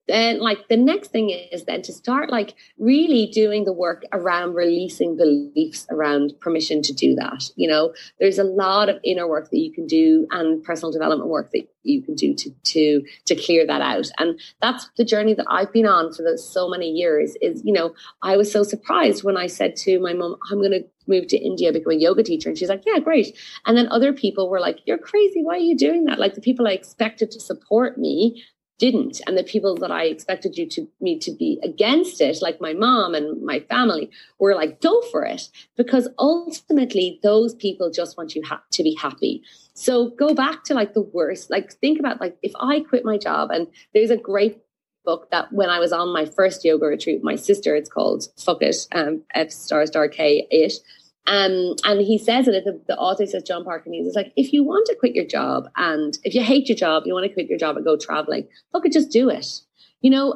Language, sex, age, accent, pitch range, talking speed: English, female, 30-49, Irish, 175-270 Hz, 230 wpm